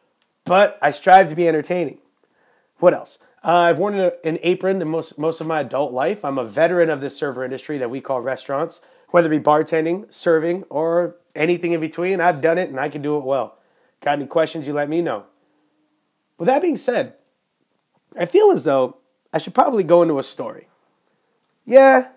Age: 30-49